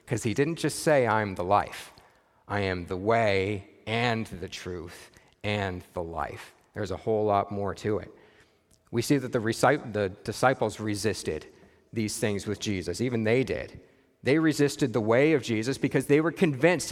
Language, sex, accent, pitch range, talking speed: English, male, American, 105-145 Hz, 175 wpm